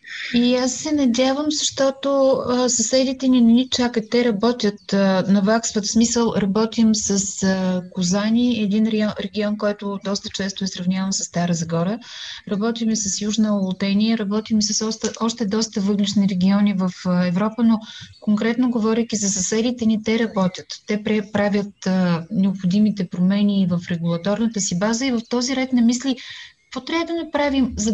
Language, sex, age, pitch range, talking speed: Bulgarian, female, 20-39, 190-230 Hz, 160 wpm